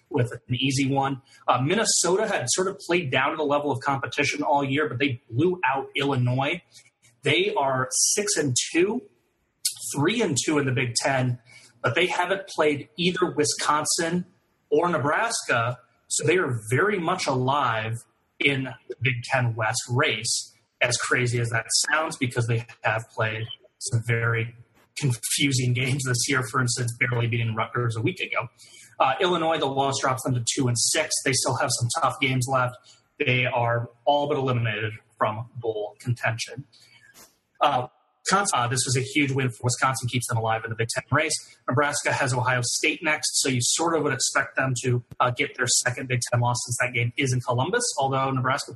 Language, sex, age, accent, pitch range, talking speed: English, male, 30-49, American, 120-145 Hz, 180 wpm